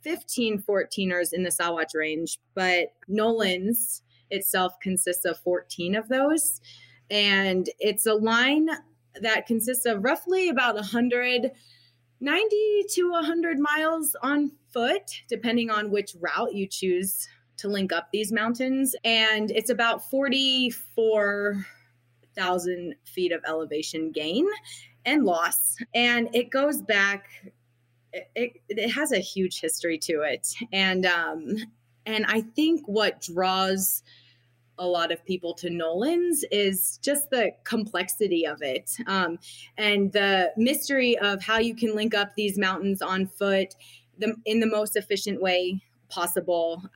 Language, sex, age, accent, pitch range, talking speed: English, female, 20-39, American, 180-235 Hz, 130 wpm